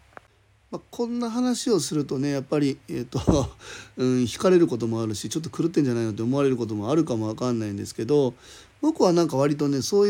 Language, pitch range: Japanese, 125-170 Hz